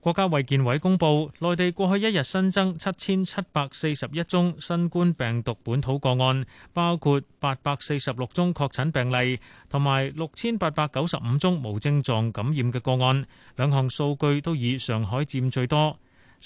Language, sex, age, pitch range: Chinese, male, 30-49, 120-160 Hz